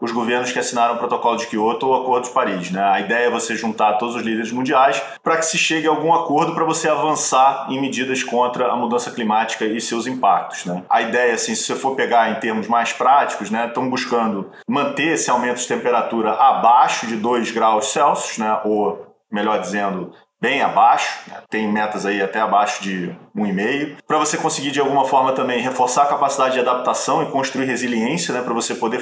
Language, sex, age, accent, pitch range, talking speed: Portuguese, male, 20-39, Brazilian, 115-140 Hz, 205 wpm